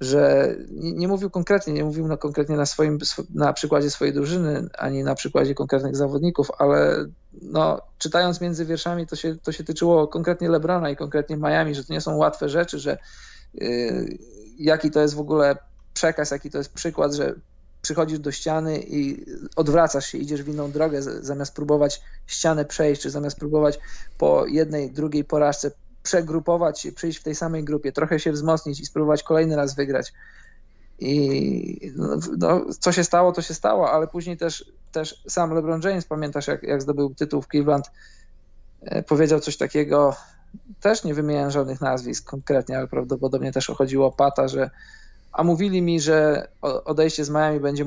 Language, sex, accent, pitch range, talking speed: Polish, male, native, 140-160 Hz, 170 wpm